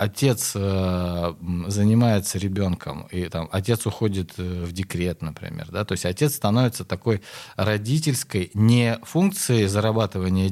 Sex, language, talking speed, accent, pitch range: male, Russian, 120 wpm, native, 90-115 Hz